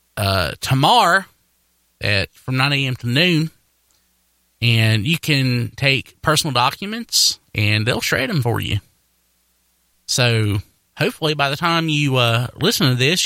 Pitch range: 95-145 Hz